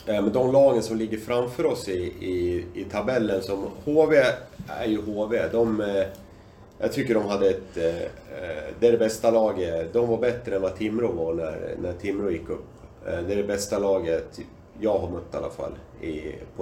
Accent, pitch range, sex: native, 95-120 Hz, male